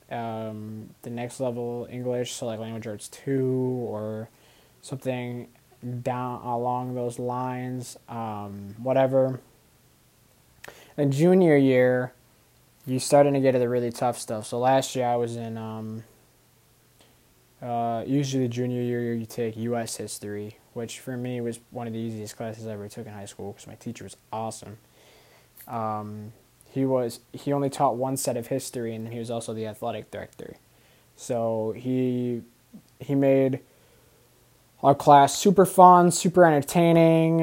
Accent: American